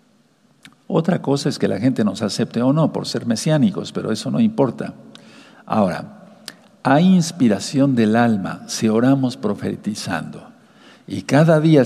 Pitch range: 115-175 Hz